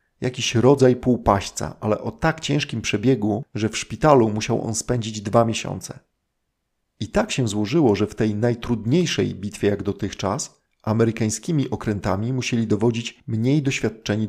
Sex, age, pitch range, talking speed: male, 40-59, 105-130 Hz, 140 wpm